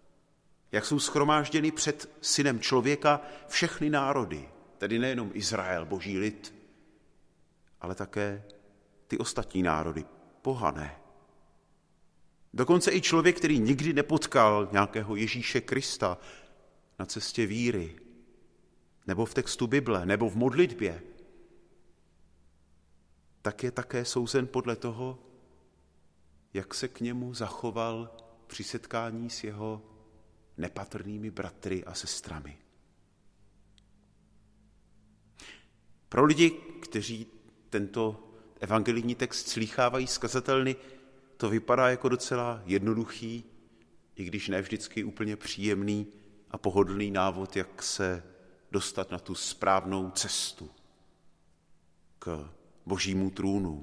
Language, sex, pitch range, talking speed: Czech, male, 95-120 Hz, 100 wpm